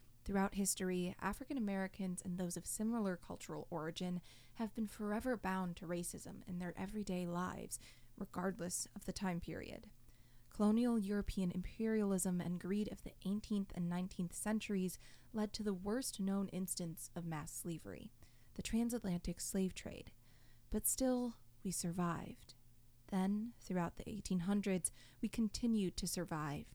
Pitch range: 175-210 Hz